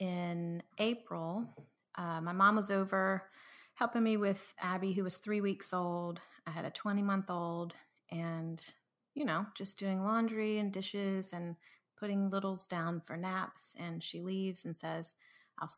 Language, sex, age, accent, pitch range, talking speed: English, female, 30-49, American, 165-195 Hz, 150 wpm